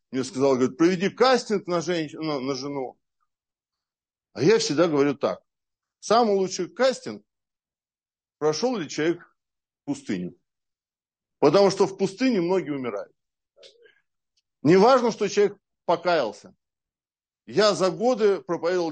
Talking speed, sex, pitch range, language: 115 wpm, male, 145-230 Hz, Russian